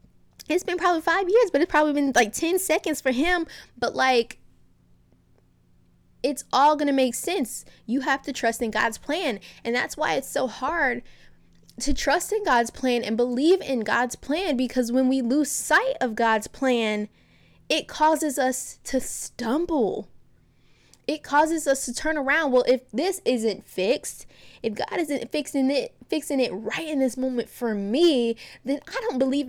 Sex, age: female, 10-29